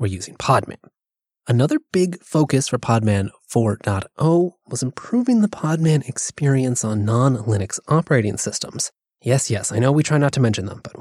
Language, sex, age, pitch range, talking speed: English, male, 20-39, 115-165 Hz, 160 wpm